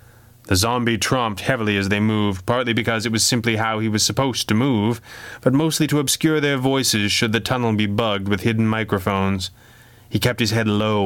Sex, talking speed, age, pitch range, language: male, 200 wpm, 30-49, 105-125 Hz, English